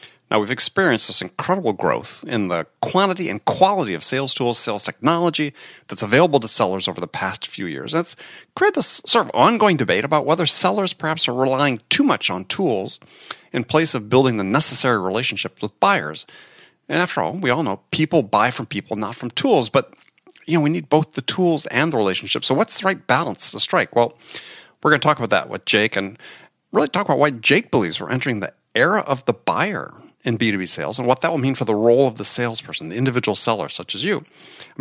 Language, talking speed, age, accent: English, 215 wpm, 40-59, American